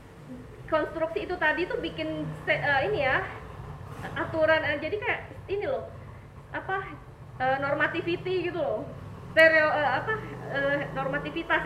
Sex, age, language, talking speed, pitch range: female, 20-39, Indonesian, 125 wpm, 255-315 Hz